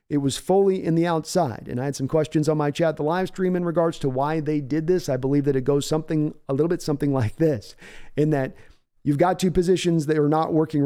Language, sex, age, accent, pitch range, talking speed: English, male, 40-59, American, 140-165 Hz, 255 wpm